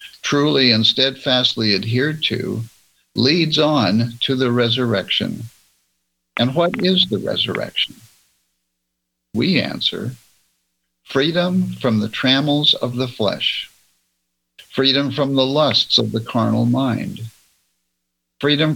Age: 60-79